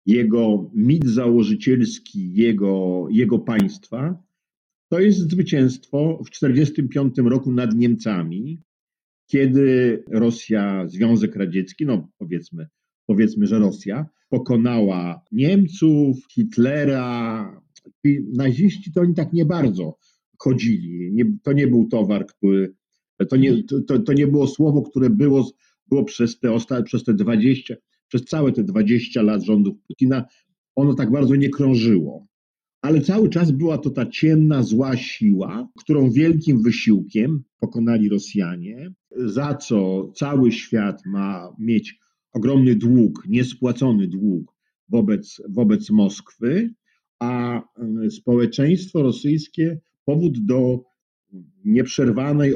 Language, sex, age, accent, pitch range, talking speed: Polish, male, 50-69, native, 115-155 Hz, 115 wpm